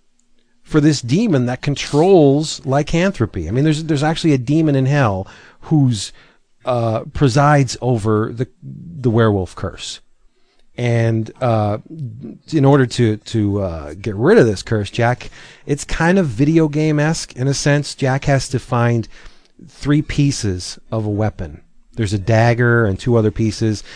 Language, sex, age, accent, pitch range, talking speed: English, male, 40-59, American, 105-140 Hz, 150 wpm